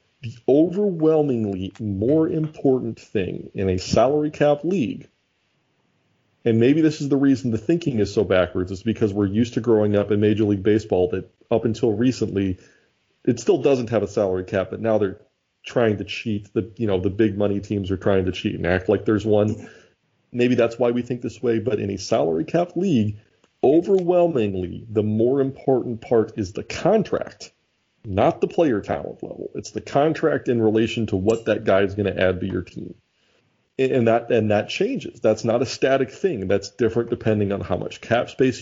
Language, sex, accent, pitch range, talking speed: English, male, American, 100-130 Hz, 195 wpm